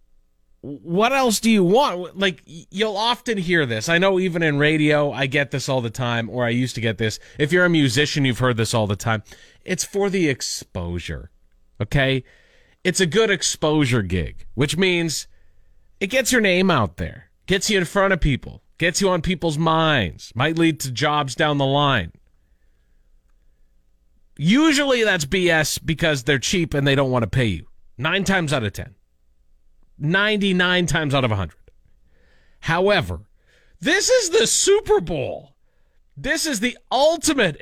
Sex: male